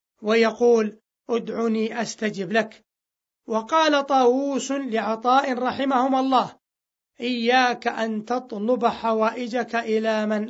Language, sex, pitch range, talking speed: Arabic, male, 215-255 Hz, 85 wpm